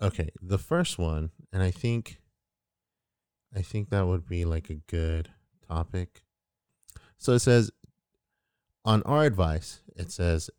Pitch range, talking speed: 80-100 Hz, 135 wpm